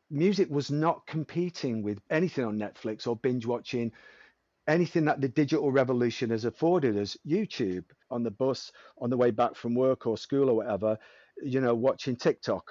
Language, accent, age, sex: English, British, 40-59, male